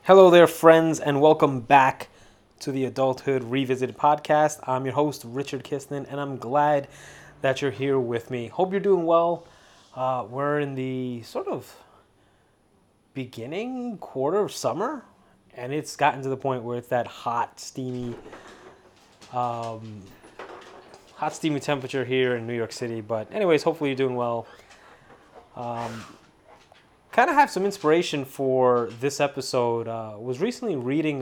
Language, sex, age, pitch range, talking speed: English, male, 20-39, 120-150 Hz, 150 wpm